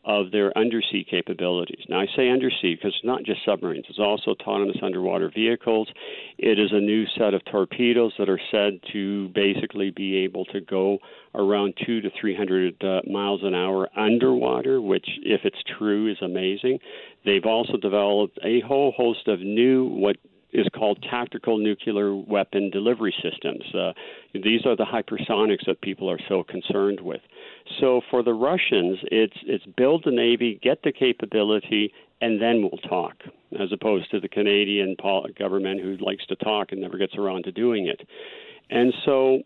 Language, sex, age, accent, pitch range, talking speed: English, male, 50-69, American, 100-130 Hz, 170 wpm